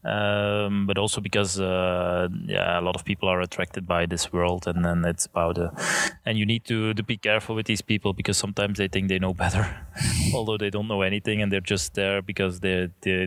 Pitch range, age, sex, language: 95-105 Hz, 20-39, male, Dutch